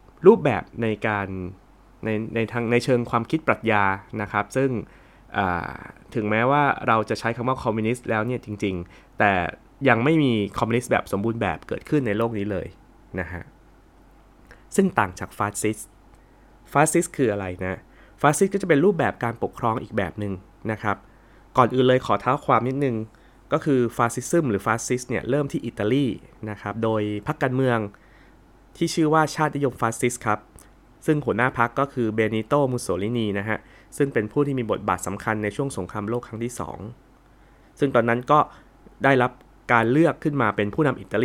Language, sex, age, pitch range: Thai, male, 20-39, 105-130 Hz